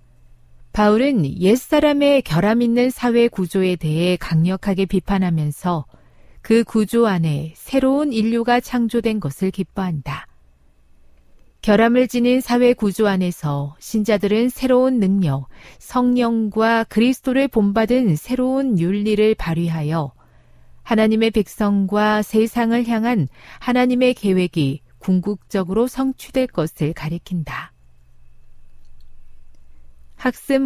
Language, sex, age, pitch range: Korean, female, 40-59, 155-240 Hz